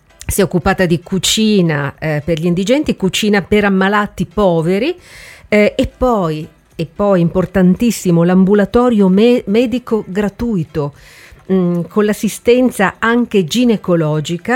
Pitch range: 160-210 Hz